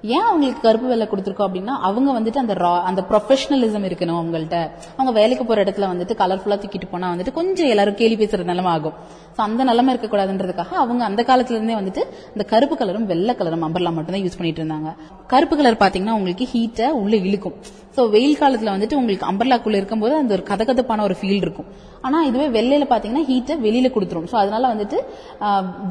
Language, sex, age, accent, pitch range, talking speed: Tamil, female, 20-39, native, 185-245 Hz, 175 wpm